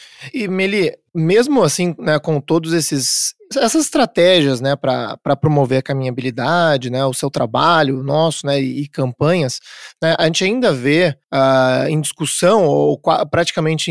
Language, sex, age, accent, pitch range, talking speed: Portuguese, male, 20-39, Brazilian, 140-175 Hz, 150 wpm